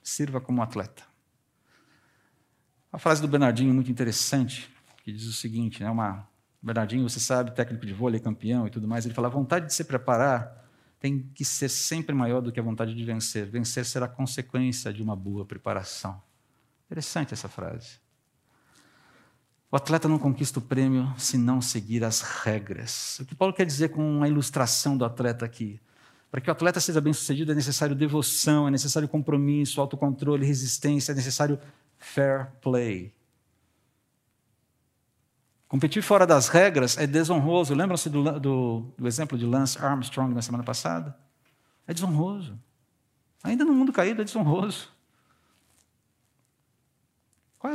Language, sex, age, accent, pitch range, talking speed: Portuguese, male, 50-69, Brazilian, 120-150 Hz, 150 wpm